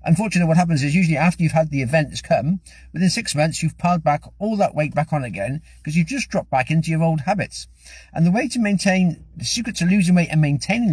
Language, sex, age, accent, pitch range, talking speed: English, male, 50-69, British, 155-215 Hz, 240 wpm